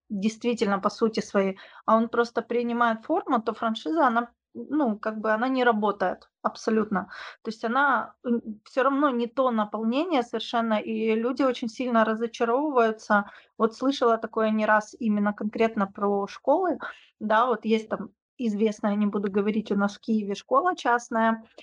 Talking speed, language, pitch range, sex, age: 155 wpm, Ukrainian, 215-245 Hz, female, 20-39